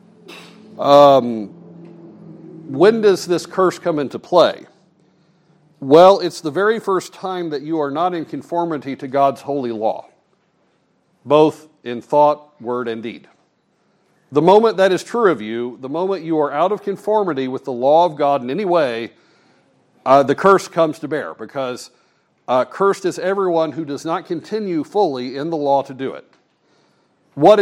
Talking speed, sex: 165 wpm, male